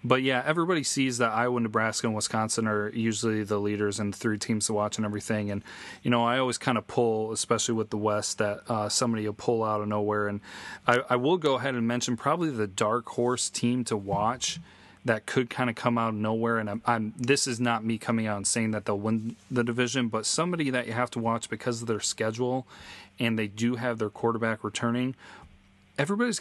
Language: English